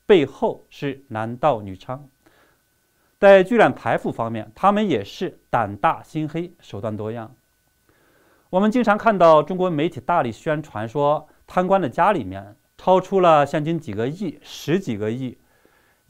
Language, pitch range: Chinese, 120-185 Hz